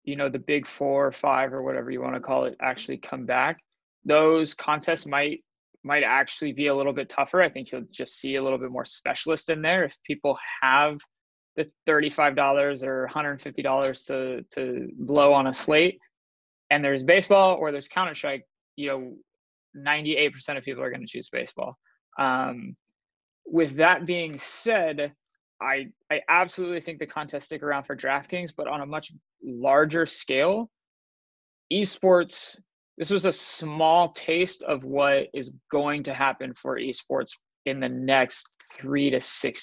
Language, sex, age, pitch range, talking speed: English, male, 20-39, 135-160 Hz, 165 wpm